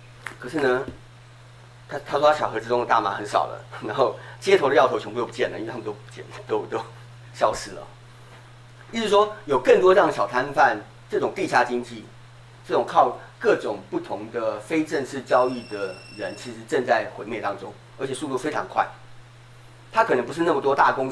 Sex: male